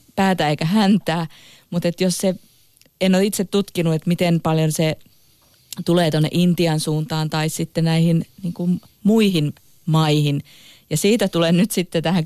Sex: female